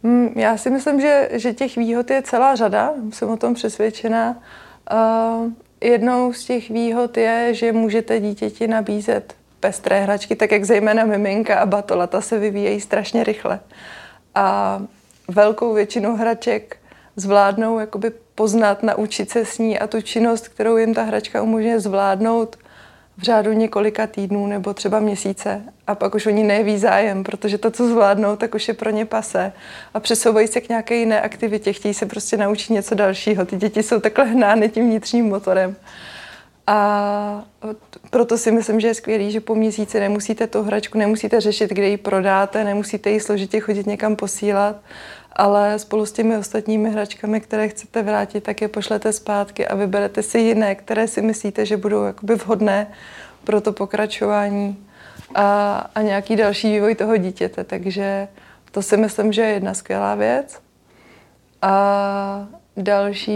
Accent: native